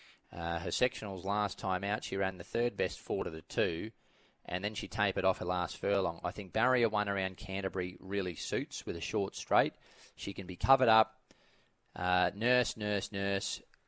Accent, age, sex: Australian, 20-39, male